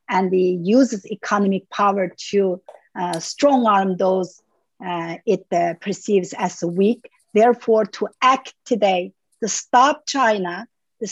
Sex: female